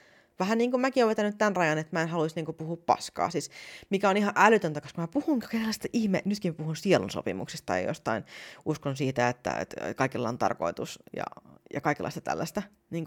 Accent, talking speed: native, 200 wpm